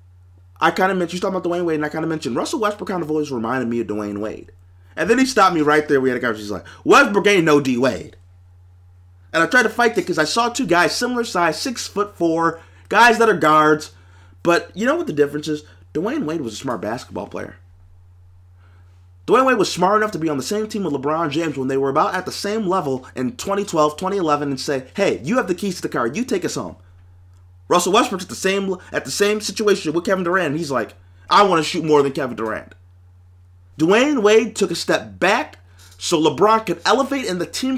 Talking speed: 235 wpm